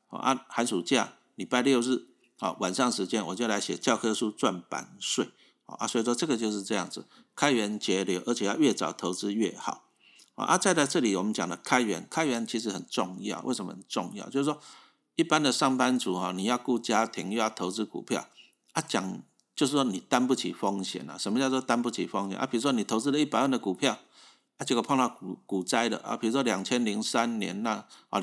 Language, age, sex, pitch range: Chinese, 50-69, male, 100-130 Hz